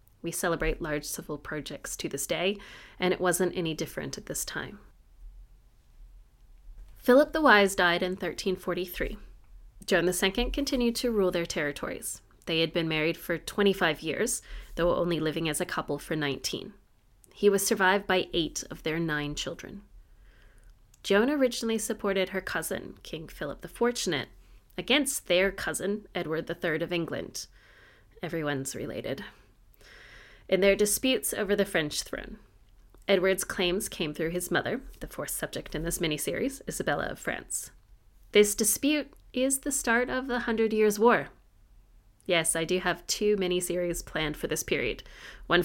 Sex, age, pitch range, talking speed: female, 30-49, 155-205 Hz, 150 wpm